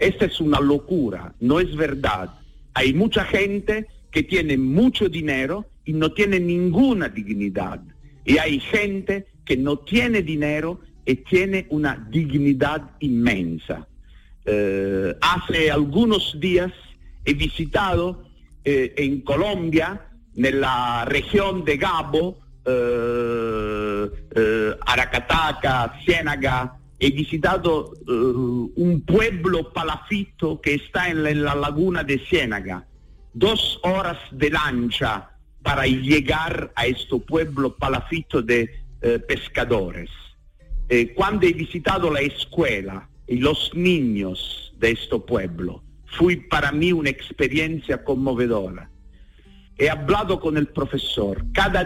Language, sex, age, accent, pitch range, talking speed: Spanish, male, 50-69, Italian, 120-170 Hz, 115 wpm